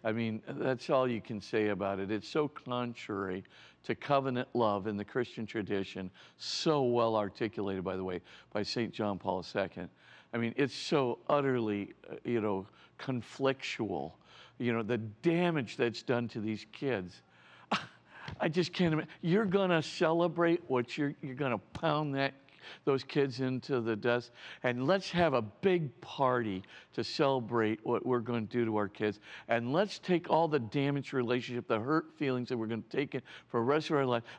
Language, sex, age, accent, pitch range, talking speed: English, male, 50-69, American, 110-150 Hz, 180 wpm